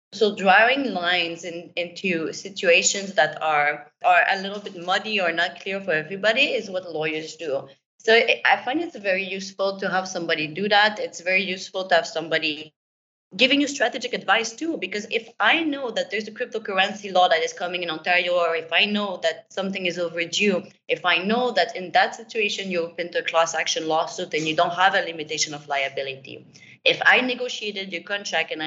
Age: 20-39